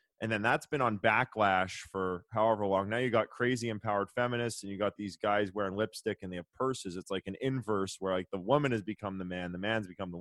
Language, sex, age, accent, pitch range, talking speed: English, male, 20-39, American, 100-130 Hz, 245 wpm